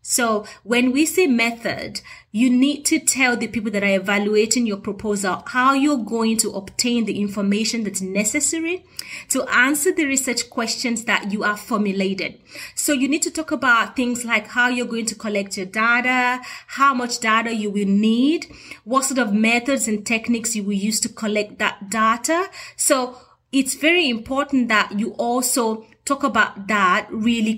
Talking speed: 170 wpm